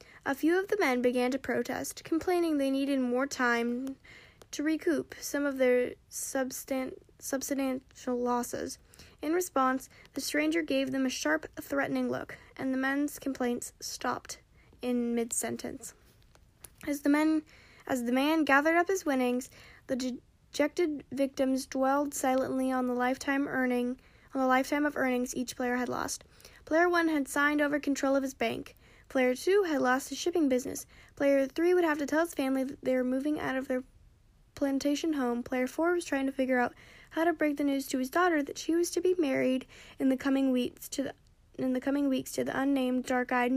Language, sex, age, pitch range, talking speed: English, female, 10-29, 255-300 Hz, 175 wpm